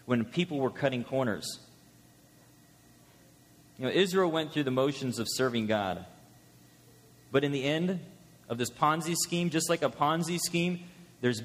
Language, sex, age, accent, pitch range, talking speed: English, male, 30-49, American, 130-170 Hz, 150 wpm